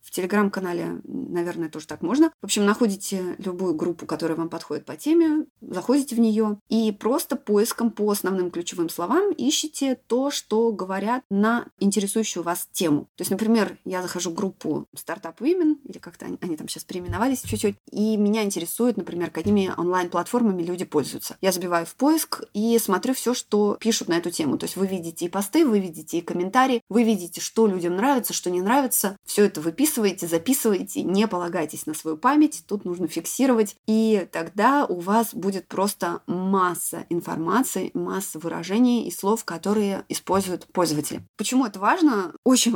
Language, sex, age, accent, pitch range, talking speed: Russian, female, 20-39, native, 175-230 Hz, 170 wpm